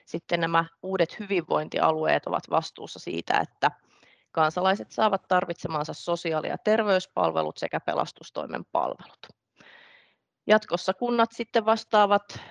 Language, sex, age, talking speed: Finnish, female, 30-49, 100 wpm